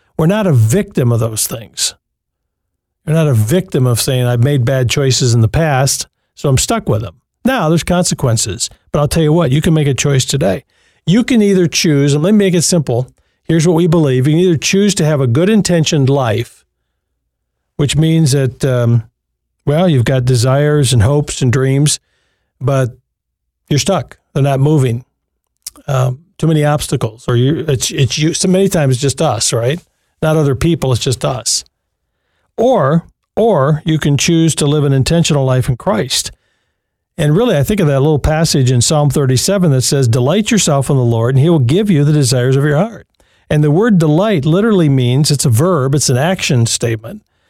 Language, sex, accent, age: English, male, American, 50-69